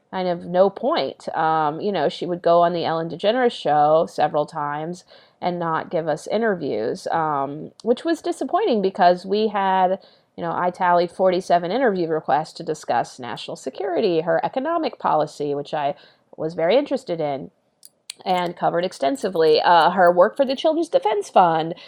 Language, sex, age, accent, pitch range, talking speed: English, female, 30-49, American, 165-215 Hz, 165 wpm